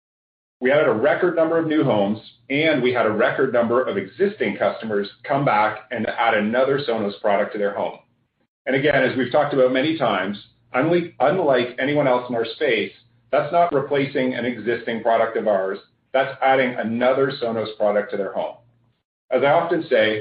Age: 40-59